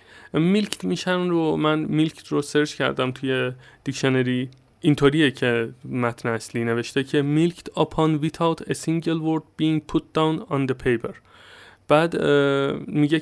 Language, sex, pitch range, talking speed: Persian, male, 125-150 Hz, 135 wpm